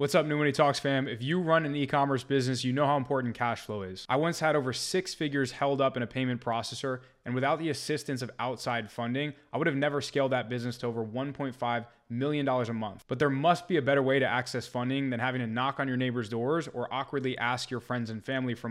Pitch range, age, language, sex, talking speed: 120-140 Hz, 20-39, English, male, 250 wpm